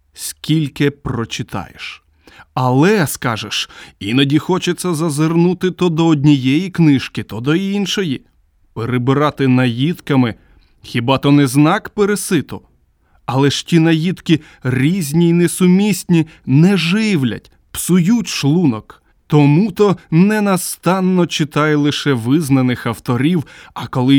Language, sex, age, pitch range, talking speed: Ukrainian, male, 20-39, 125-170 Hz, 105 wpm